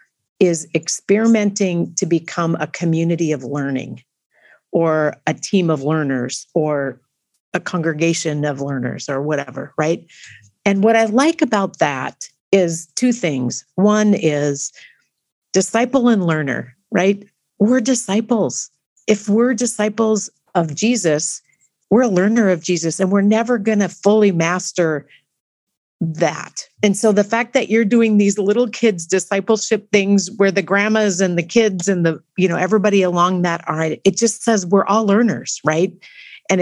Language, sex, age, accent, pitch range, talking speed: English, female, 50-69, American, 155-210 Hz, 145 wpm